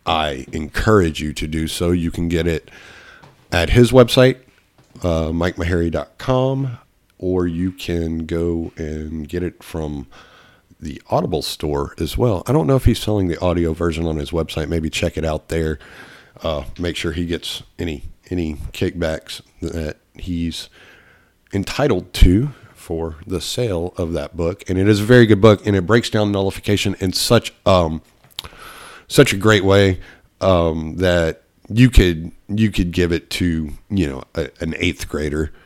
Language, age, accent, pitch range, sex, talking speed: English, 50-69, American, 80-95 Hz, male, 165 wpm